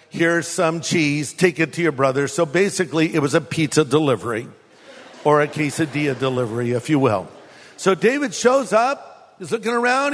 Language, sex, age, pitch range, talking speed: English, male, 50-69, 165-220 Hz, 170 wpm